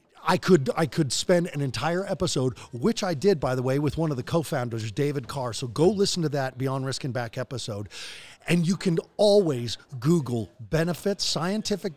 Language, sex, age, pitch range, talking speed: English, male, 40-59, 130-170 Hz, 190 wpm